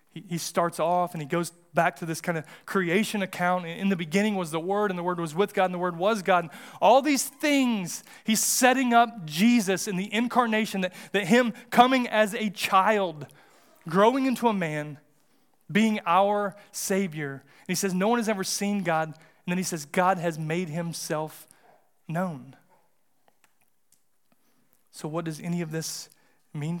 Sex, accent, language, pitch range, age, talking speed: male, American, English, 160-195 Hz, 30-49, 180 wpm